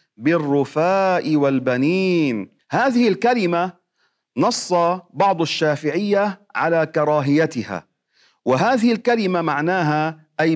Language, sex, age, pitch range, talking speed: Arabic, male, 40-59, 145-180 Hz, 75 wpm